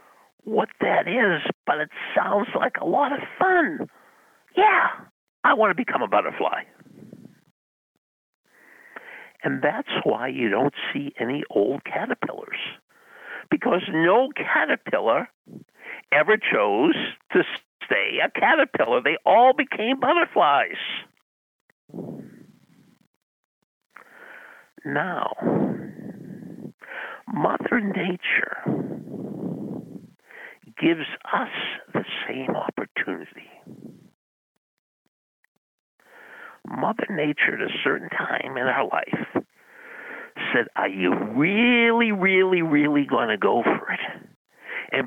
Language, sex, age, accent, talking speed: English, male, 50-69, American, 90 wpm